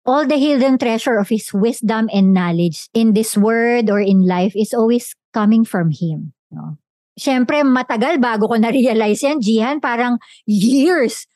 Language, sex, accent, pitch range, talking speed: English, male, Filipino, 190-250 Hz, 160 wpm